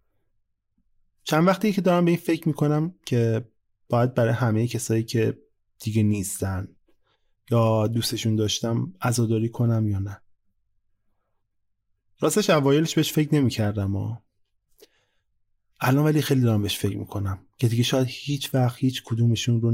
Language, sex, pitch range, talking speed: Persian, male, 100-125 Hz, 130 wpm